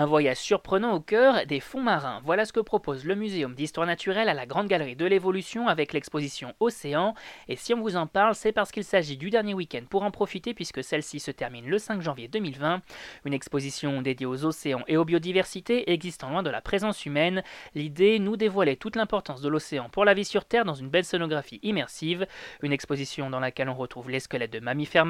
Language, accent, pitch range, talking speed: French, French, 145-200 Hz, 215 wpm